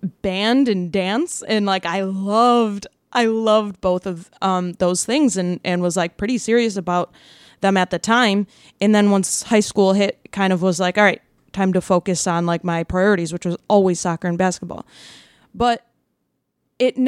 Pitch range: 180-220 Hz